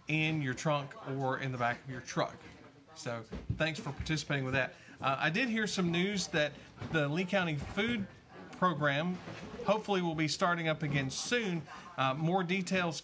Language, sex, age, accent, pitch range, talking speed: English, male, 40-59, American, 145-190 Hz, 175 wpm